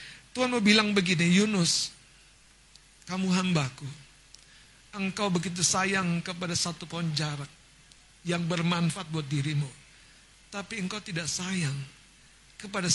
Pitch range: 150-220 Hz